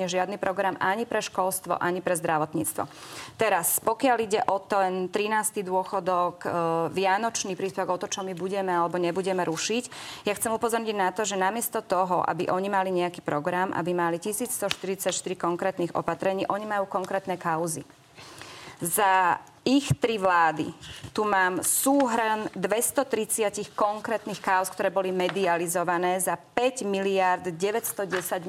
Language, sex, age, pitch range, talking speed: Slovak, female, 30-49, 180-215 Hz, 135 wpm